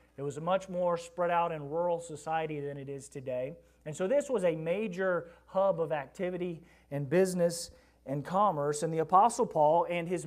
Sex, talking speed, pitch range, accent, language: male, 195 wpm, 150-190 Hz, American, English